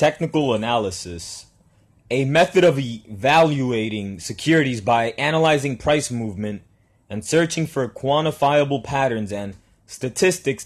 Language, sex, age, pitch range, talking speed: English, male, 20-39, 110-145 Hz, 100 wpm